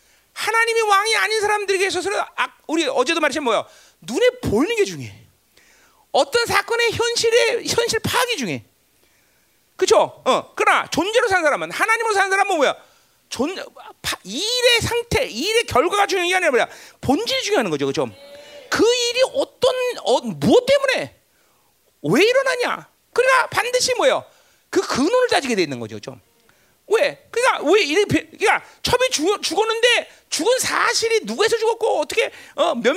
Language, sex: Korean, male